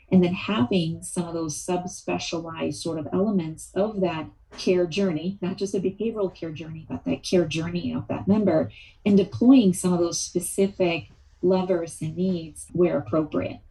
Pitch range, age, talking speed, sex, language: 160-190 Hz, 30-49, 165 wpm, female, English